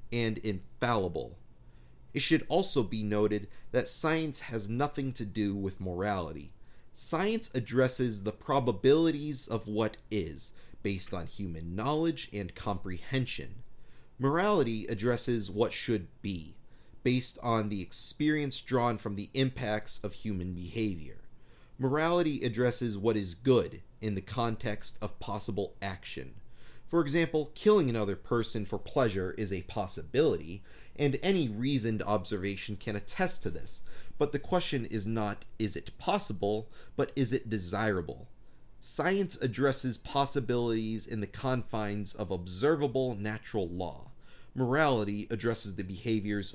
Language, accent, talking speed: English, American, 130 wpm